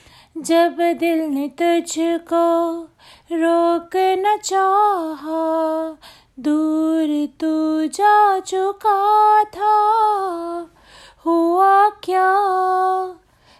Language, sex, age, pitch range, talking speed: Hindi, female, 30-49, 310-370 Hz, 60 wpm